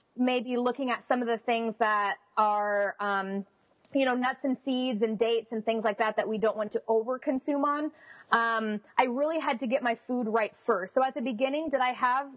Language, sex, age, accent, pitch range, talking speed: English, female, 20-39, American, 220-270 Hz, 225 wpm